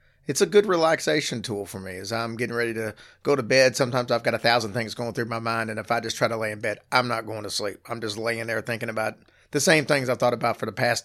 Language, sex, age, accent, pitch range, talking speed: English, male, 40-59, American, 115-140 Hz, 295 wpm